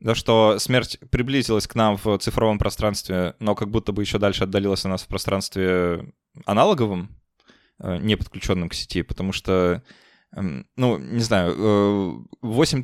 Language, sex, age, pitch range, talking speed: Russian, male, 20-39, 100-120 Hz, 145 wpm